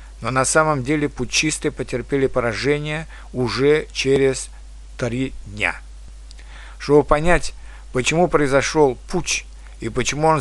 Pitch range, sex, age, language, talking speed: 125-150 Hz, male, 60-79, Russian, 110 wpm